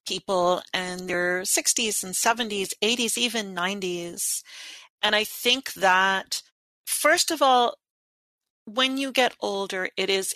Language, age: English, 40-59